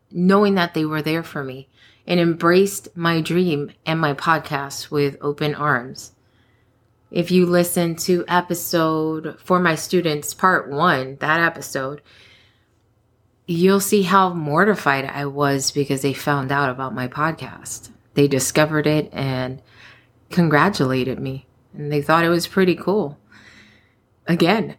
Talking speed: 135 wpm